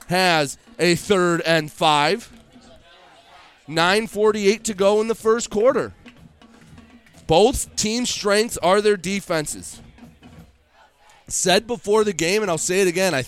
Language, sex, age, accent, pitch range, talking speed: English, male, 20-39, American, 170-215 Hz, 125 wpm